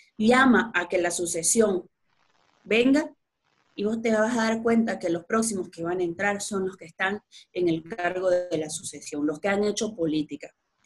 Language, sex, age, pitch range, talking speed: Spanish, female, 30-49, 180-255 Hz, 195 wpm